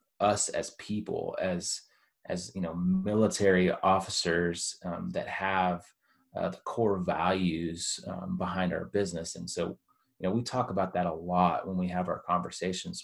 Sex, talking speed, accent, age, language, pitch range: male, 160 wpm, American, 30-49, English, 90-105 Hz